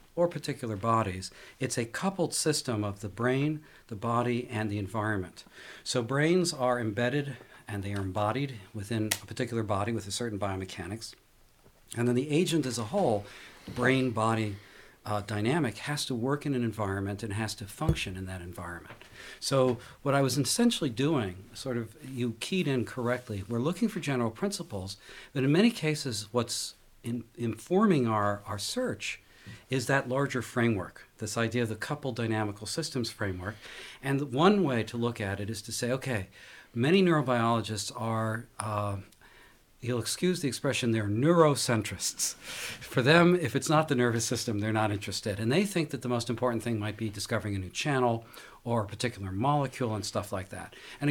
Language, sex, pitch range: English, male, 105-135 Hz